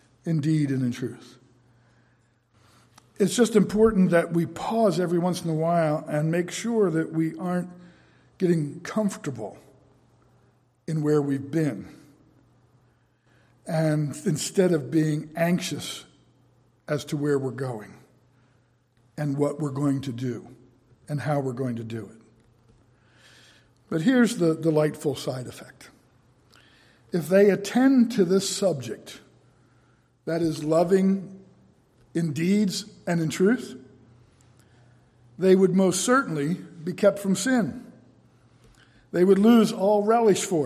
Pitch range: 130-185 Hz